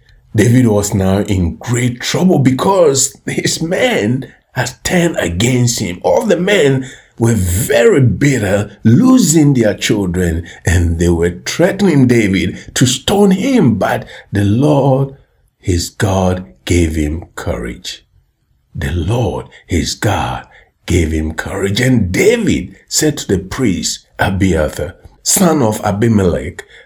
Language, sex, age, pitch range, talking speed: English, male, 60-79, 90-125 Hz, 125 wpm